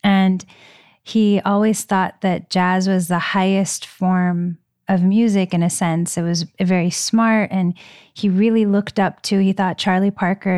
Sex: female